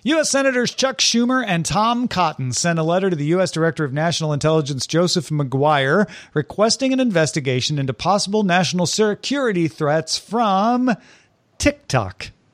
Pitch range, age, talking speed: 135-180 Hz, 40-59, 140 wpm